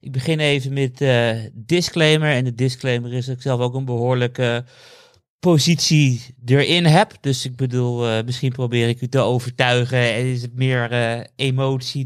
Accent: Dutch